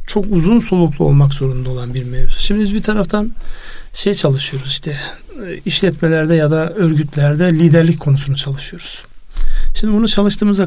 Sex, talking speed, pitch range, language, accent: male, 140 wpm, 145-175 Hz, Turkish, native